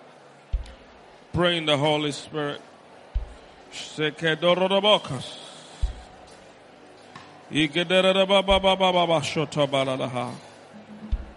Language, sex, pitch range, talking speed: English, male, 135-175 Hz, 75 wpm